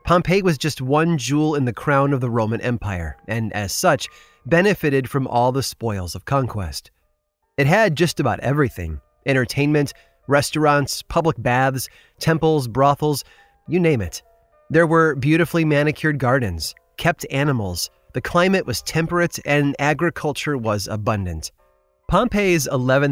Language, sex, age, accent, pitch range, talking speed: English, male, 30-49, American, 105-150 Hz, 130 wpm